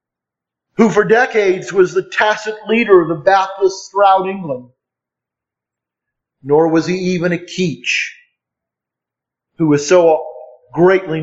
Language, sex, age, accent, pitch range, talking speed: English, male, 50-69, American, 145-190 Hz, 120 wpm